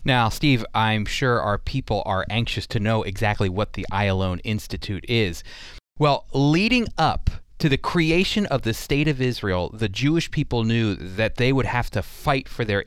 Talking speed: 185 wpm